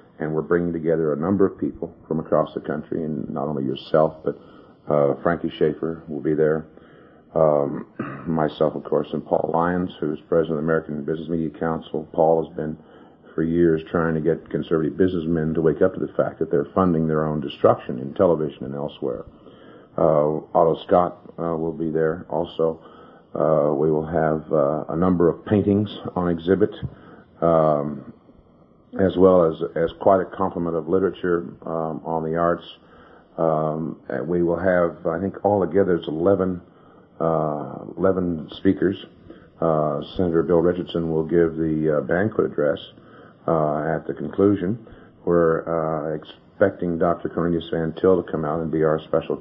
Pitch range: 80-85 Hz